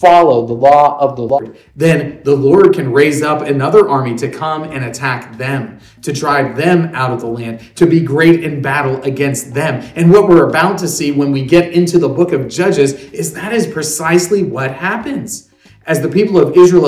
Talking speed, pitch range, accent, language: 205 wpm, 130-170 Hz, American, English